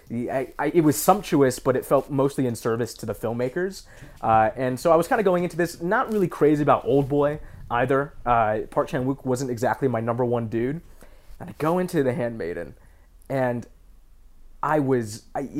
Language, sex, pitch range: English, male, 120-160 Hz